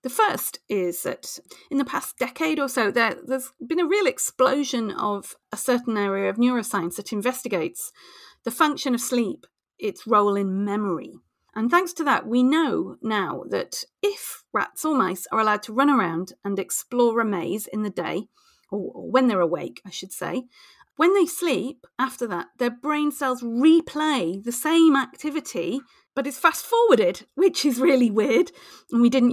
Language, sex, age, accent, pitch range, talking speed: English, female, 40-59, British, 210-290 Hz, 170 wpm